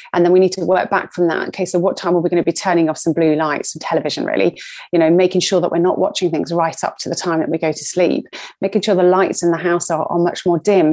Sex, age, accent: female, 30-49, British